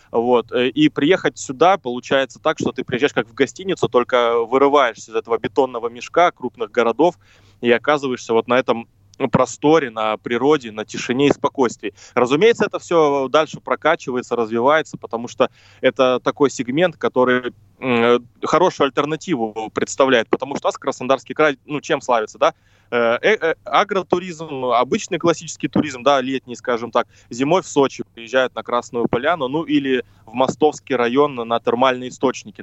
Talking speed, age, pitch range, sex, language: 140 wpm, 20-39, 120-145 Hz, male, Russian